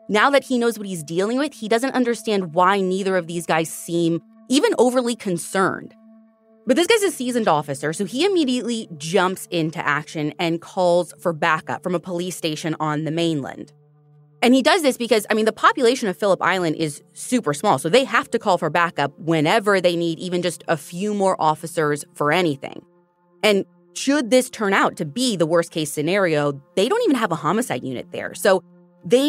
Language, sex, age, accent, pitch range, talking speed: English, female, 20-39, American, 150-220 Hz, 195 wpm